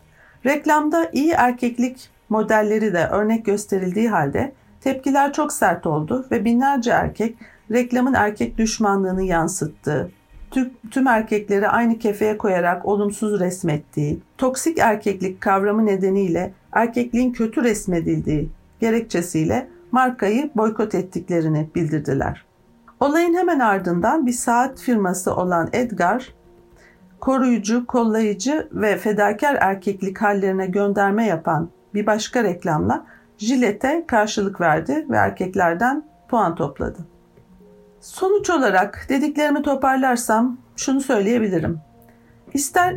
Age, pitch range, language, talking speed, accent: 50-69, 190-255 Hz, Turkish, 100 wpm, native